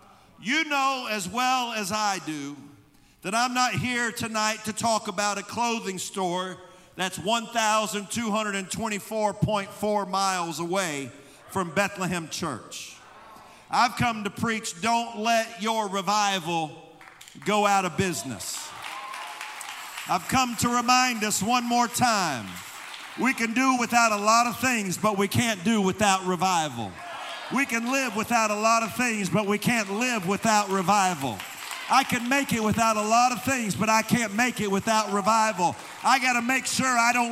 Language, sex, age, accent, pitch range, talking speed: English, male, 50-69, American, 200-255 Hz, 155 wpm